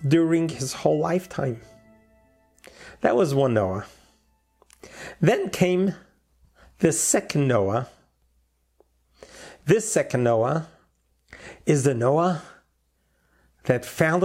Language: English